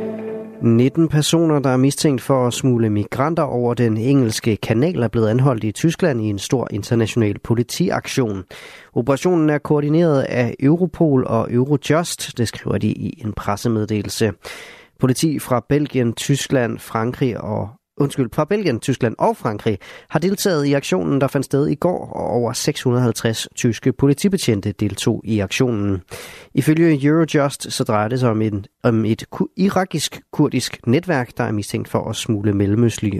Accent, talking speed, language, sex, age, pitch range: native, 150 wpm, Danish, male, 30-49, 110-145 Hz